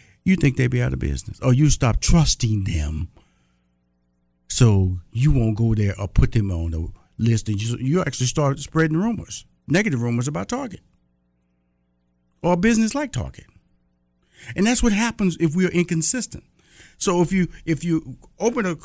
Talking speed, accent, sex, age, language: 170 wpm, American, male, 50-69, English